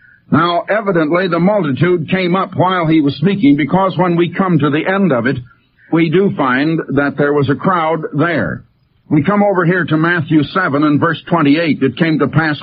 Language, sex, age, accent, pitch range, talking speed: English, male, 60-79, American, 145-185 Hz, 200 wpm